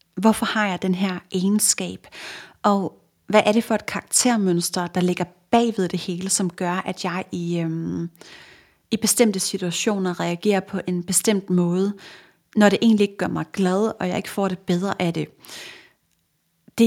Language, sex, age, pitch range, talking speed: Danish, female, 30-49, 180-210 Hz, 170 wpm